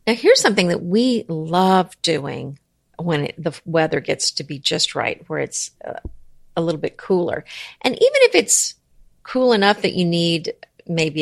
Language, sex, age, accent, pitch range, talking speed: English, female, 50-69, American, 155-185 Hz, 170 wpm